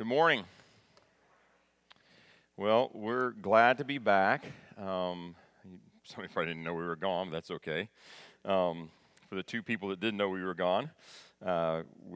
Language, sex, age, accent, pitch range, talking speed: English, male, 40-59, American, 85-110 Hz, 155 wpm